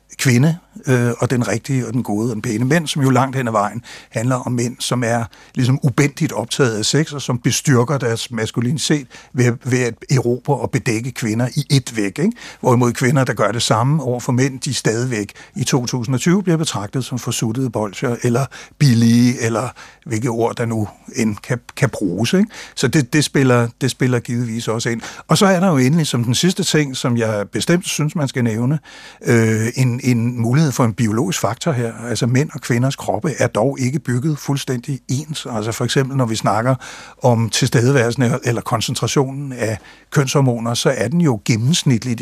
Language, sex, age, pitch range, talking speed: Danish, male, 60-79, 120-140 Hz, 190 wpm